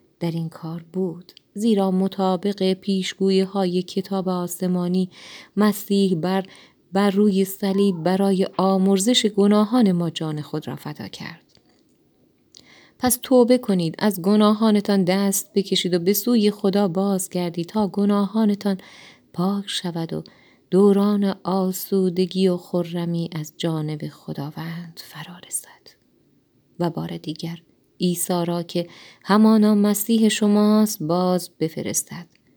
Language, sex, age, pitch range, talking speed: Persian, female, 30-49, 170-205 Hz, 110 wpm